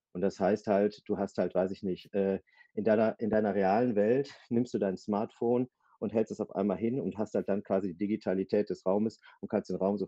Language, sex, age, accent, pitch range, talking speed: German, male, 40-59, German, 100-115 Hz, 240 wpm